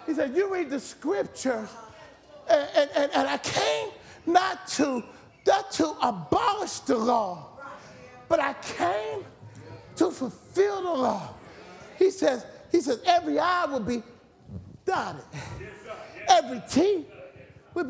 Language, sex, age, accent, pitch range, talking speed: English, male, 40-59, American, 235-335 Hz, 120 wpm